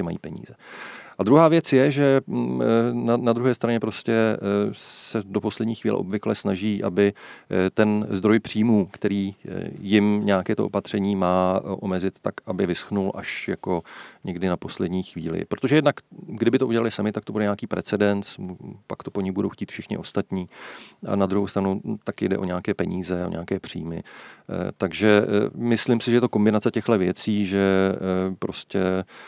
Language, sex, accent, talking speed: Czech, male, native, 165 wpm